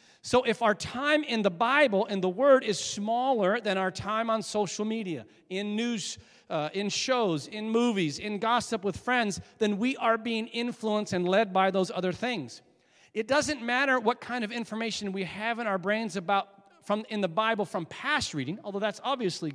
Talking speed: 195 wpm